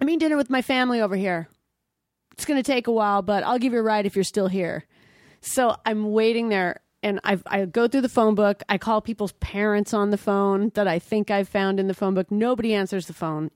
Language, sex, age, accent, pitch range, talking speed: English, female, 30-49, American, 175-215 Hz, 245 wpm